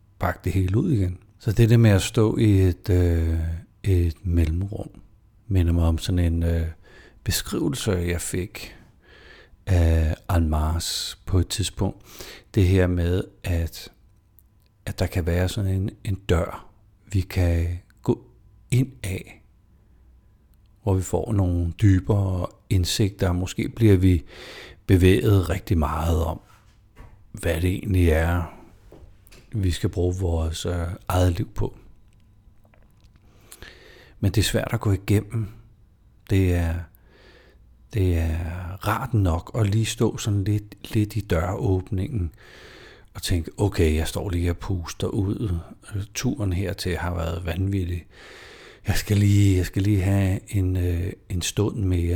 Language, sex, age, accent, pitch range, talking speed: Danish, male, 60-79, native, 90-105 Hz, 135 wpm